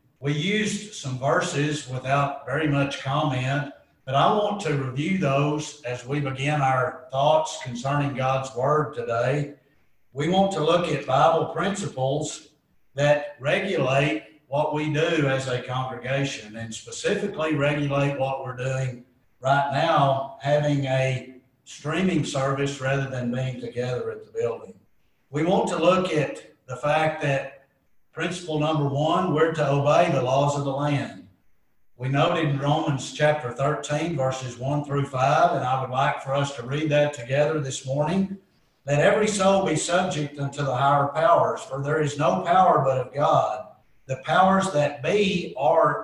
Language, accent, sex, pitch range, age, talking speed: English, American, male, 130-155 Hz, 60-79, 155 wpm